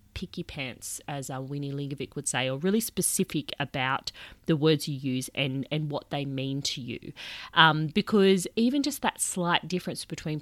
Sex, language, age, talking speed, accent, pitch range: female, English, 30-49, 180 wpm, Australian, 140-180 Hz